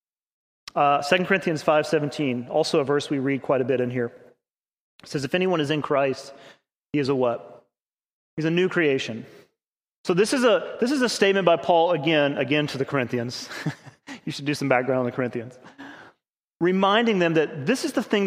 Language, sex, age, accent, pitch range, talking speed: English, male, 30-49, American, 140-175 Hz, 195 wpm